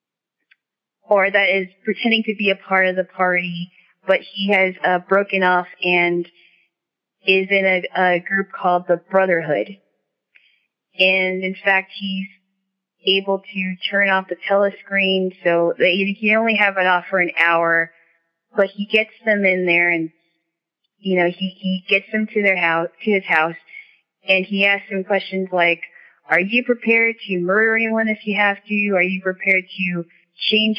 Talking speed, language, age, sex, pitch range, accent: 170 wpm, English, 30-49, female, 175-200 Hz, American